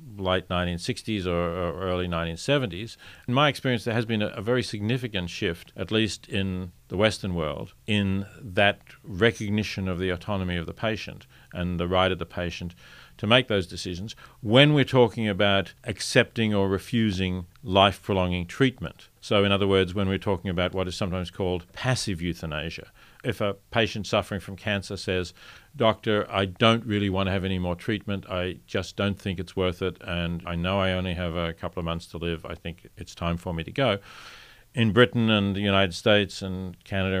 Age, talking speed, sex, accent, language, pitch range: 50-69, 185 wpm, male, Australian, English, 90-110 Hz